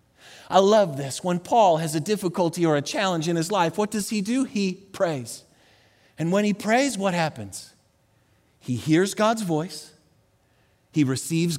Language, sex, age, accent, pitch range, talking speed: English, male, 40-59, American, 135-210 Hz, 165 wpm